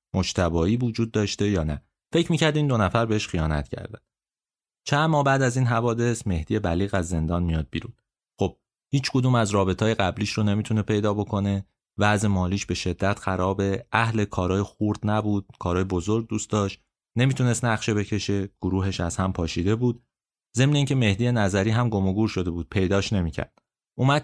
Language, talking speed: Persian, 165 wpm